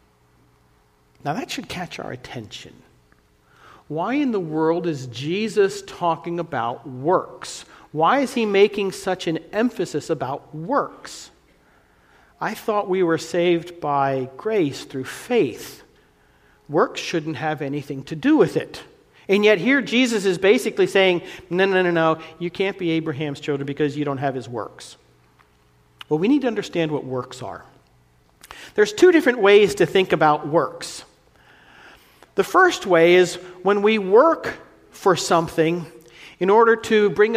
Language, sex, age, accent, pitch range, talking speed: English, male, 50-69, American, 145-205 Hz, 150 wpm